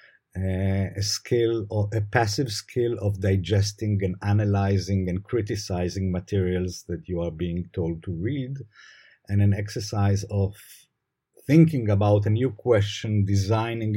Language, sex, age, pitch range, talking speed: English, male, 50-69, 100-120 Hz, 135 wpm